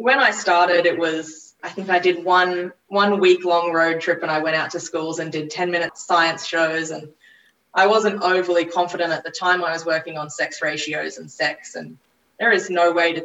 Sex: female